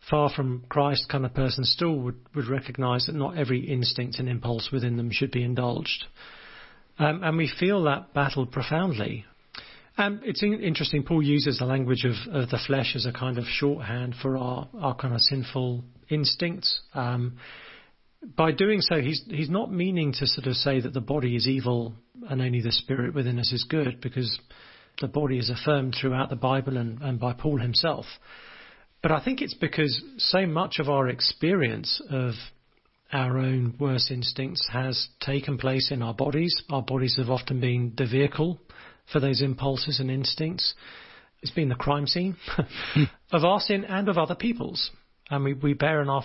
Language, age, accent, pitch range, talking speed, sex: English, 40-59, British, 125-150 Hz, 185 wpm, male